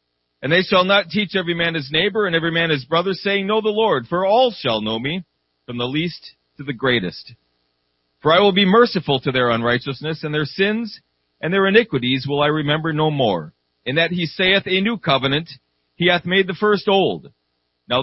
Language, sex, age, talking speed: English, male, 40-59, 205 wpm